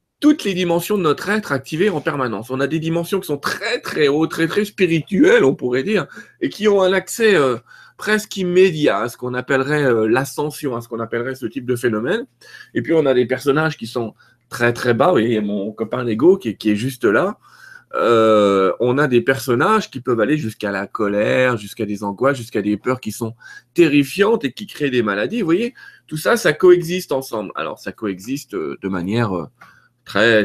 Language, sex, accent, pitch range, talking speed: French, male, French, 110-180 Hz, 210 wpm